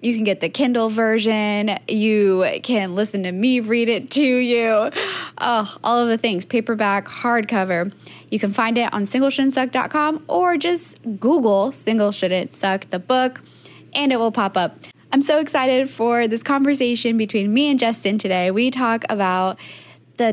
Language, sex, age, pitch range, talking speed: English, female, 10-29, 195-250 Hz, 165 wpm